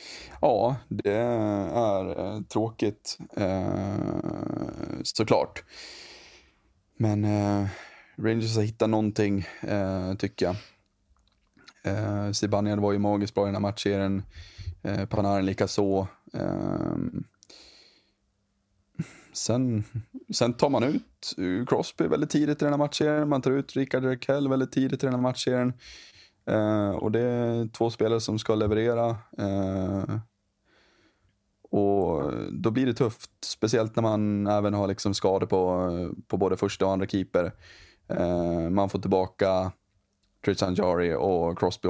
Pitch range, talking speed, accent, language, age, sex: 95-115 Hz, 125 wpm, native, Swedish, 20-39, male